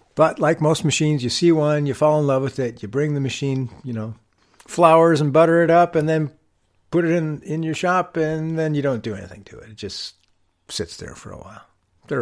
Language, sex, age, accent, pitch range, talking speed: English, male, 60-79, American, 105-145 Hz, 235 wpm